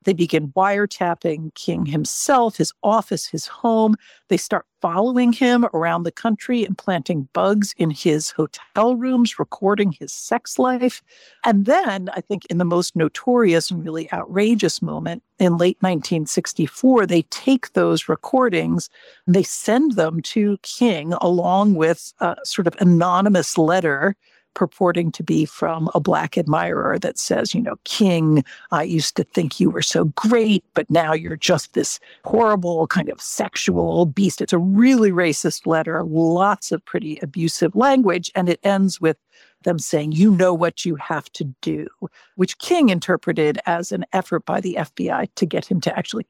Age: 60-79